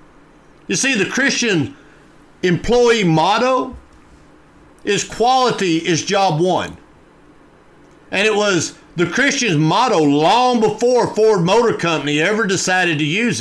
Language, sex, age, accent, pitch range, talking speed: English, male, 50-69, American, 145-185 Hz, 115 wpm